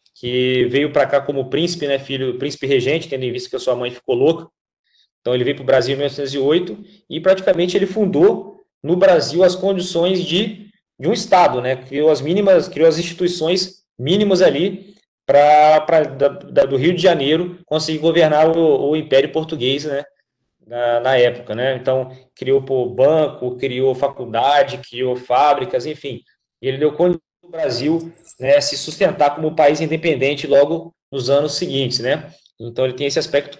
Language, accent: Portuguese, Brazilian